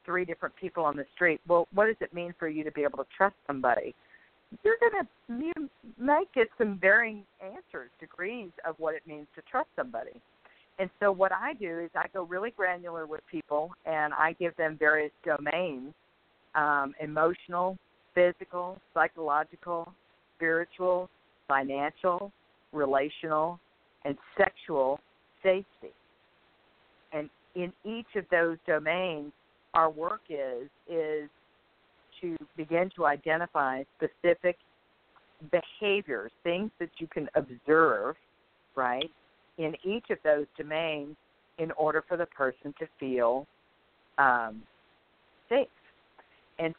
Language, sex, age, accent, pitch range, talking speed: English, female, 50-69, American, 150-180 Hz, 130 wpm